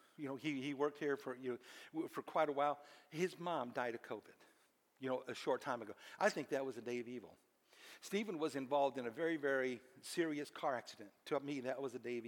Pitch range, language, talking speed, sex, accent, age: 150-225 Hz, English, 240 wpm, male, American, 60-79